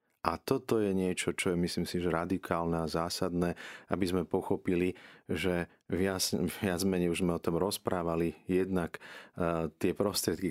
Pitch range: 80-95 Hz